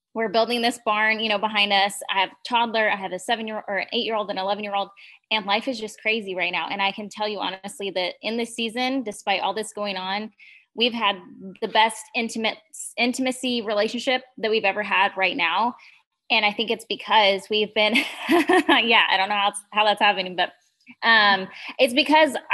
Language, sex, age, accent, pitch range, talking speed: English, female, 20-39, American, 190-220 Hz, 215 wpm